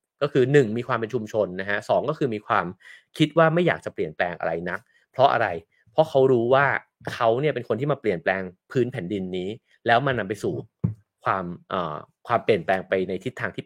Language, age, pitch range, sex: English, 30-49, 110-155 Hz, male